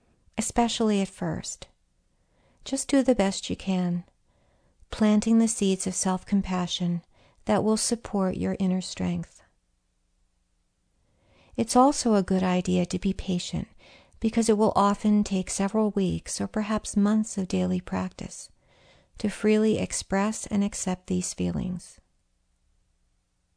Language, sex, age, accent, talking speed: English, female, 50-69, American, 120 wpm